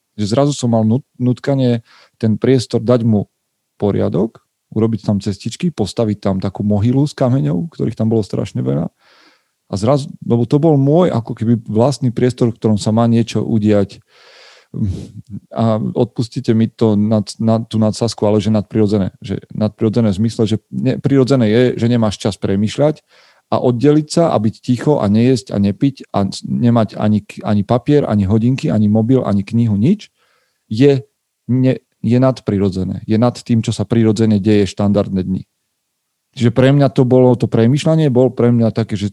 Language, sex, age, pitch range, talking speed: Slovak, male, 40-59, 105-125 Hz, 170 wpm